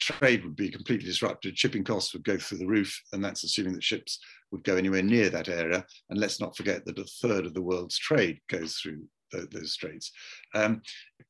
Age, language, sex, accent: 50-69, English, male, British